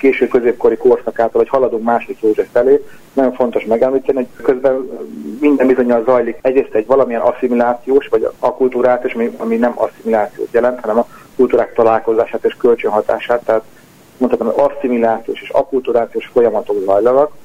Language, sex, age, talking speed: Hungarian, male, 40-59, 140 wpm